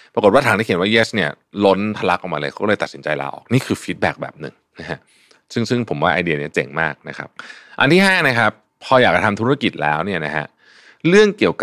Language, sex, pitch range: Thai, male, 90-120 Hz